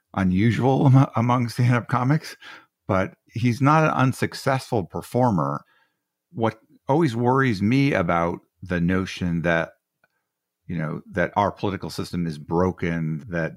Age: 50-69